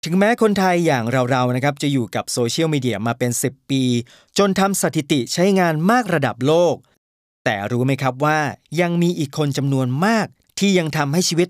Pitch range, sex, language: 125-175 Hz, male, Thai